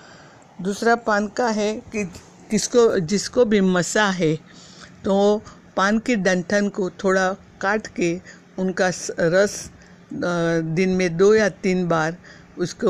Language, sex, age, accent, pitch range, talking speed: Hindi, female, 60-79, native, 170-200 Hz, 125 wpm